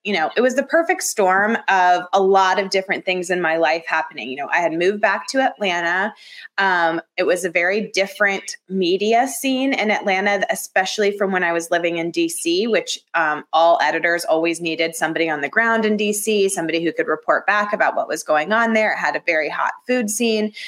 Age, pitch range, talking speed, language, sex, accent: 20-39, 175-235 Hz, 210 wpm, English, female, American